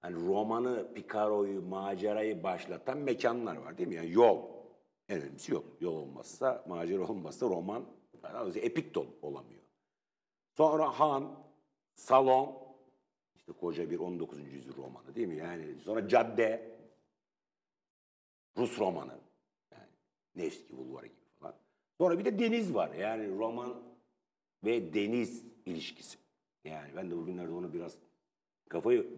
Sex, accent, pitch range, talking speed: male, Turkish, 85-135 Hz, 120 wpm